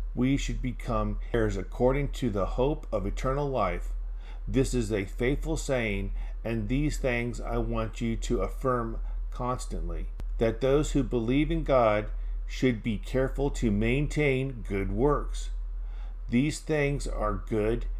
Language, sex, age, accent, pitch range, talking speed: English, male, 50-69, American, 105-140 Hz, 140 wpm